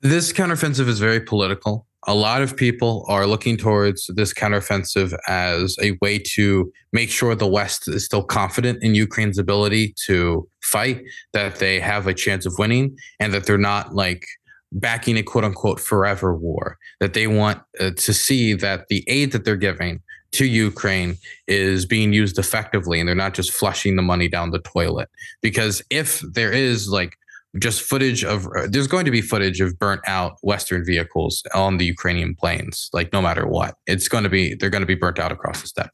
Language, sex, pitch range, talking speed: Finnish, male, 95-115 Hz, 195 wpm